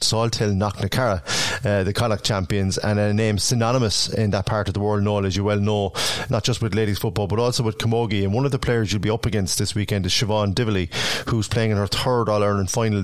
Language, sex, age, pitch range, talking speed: English, male, 30-49, 95-110 Hz, 245 wpm